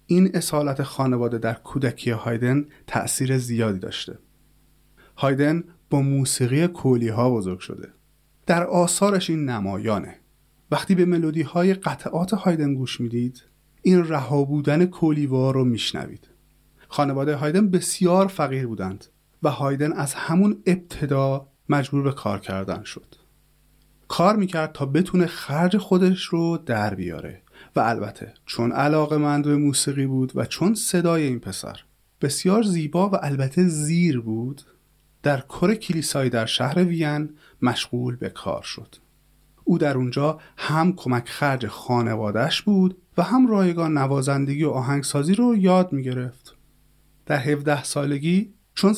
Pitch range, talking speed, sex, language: 130-175 Hz, 130 wpm, male, English